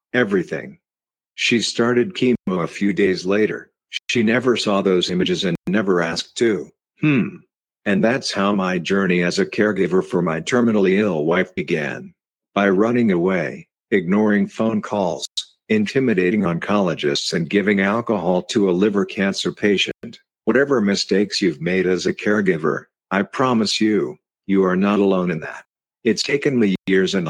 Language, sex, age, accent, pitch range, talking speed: English, male, 50-69, American, 95-110 Hz, 150 wpm